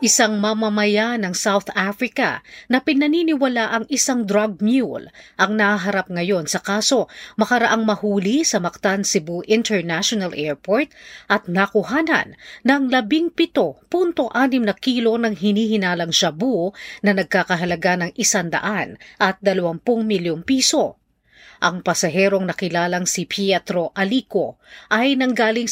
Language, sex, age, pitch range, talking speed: Filipino, female, 40-59, 180-235 Hz, 120 wpm